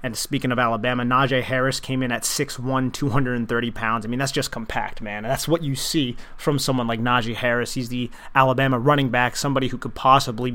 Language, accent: English, American